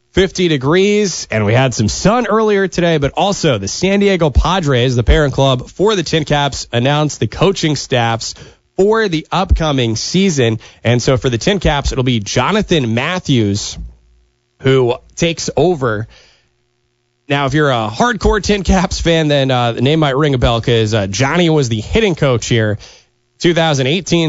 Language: English